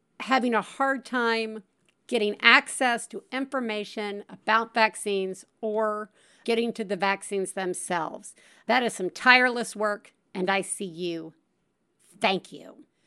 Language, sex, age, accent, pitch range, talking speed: English, female, 50-69, American, 195-255 Hz, 125 wpm